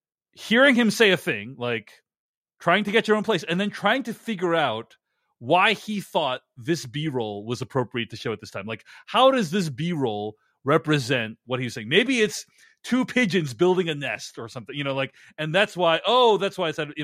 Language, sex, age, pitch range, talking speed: English, male, 30-49, 135-195 Hz, 210 wpm